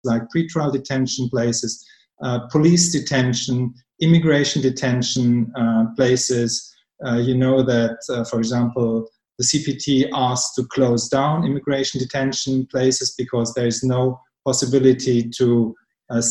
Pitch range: 125-140 Hz